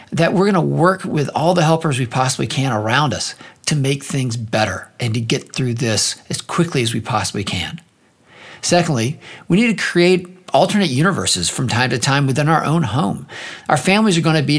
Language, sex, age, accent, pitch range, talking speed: English, male, 50-69, American, 120-170 Hz, 205 wpm